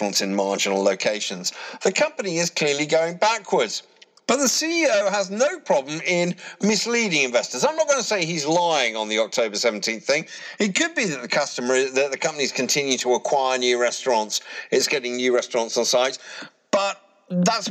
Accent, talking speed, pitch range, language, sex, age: British, 180 wpm, 160-250 Hz, English, male, 50-69